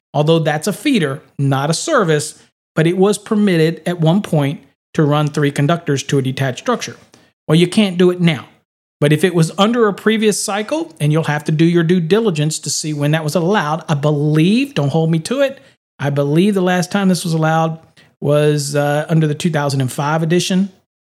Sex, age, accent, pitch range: male, 40-59, American, 145-180 Hz